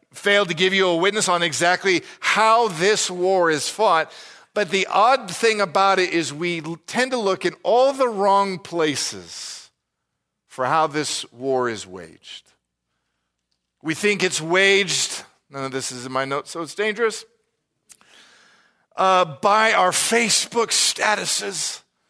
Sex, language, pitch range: male, English, 150-225 Hz